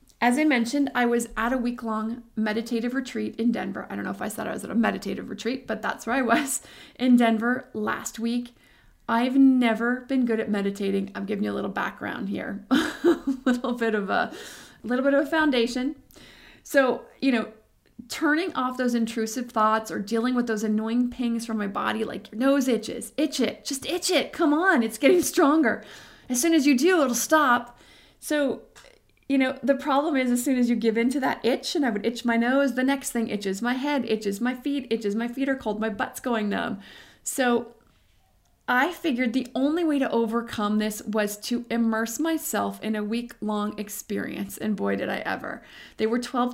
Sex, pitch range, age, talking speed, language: female, 220-265 Hz, 30-49, 205 wpm, English